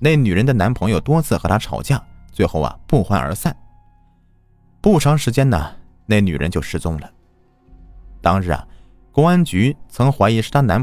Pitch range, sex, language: 85-125 Hz, male, Chinese